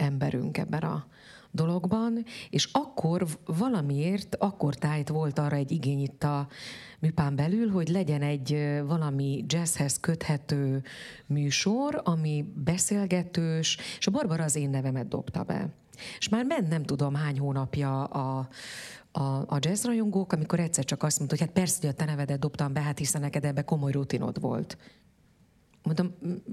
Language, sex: Hungarian, female